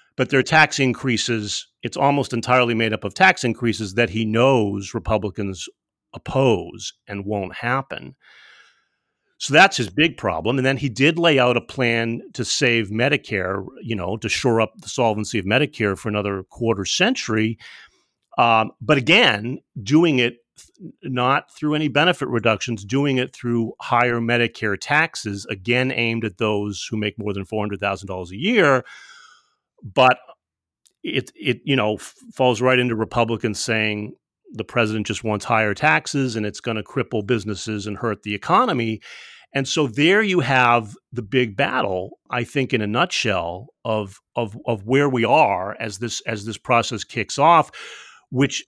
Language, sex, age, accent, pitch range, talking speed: English, male, 40-59, American, 105-130 Hz, 160 wpm